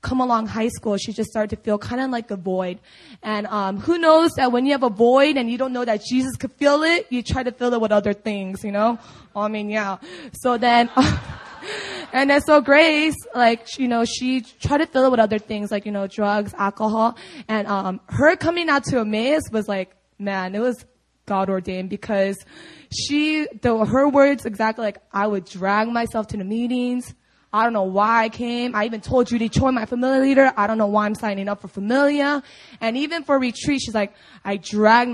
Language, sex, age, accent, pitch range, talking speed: English, female, 20-39, American, 210-265 Hz, 215 wpm